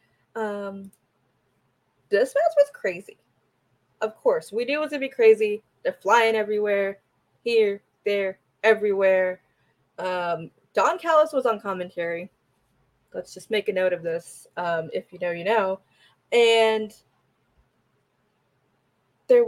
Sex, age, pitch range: female, 20-39, 190-290 Hz